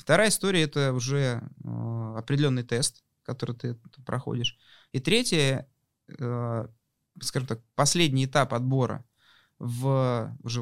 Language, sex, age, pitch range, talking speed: Russian, male, 20-39, 120-155 Hz, 105 wpm